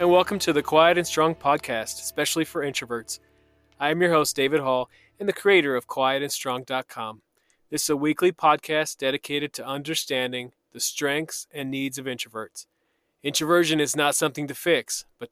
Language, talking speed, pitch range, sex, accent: English, 165 wpm, 130-155 Hz, male, American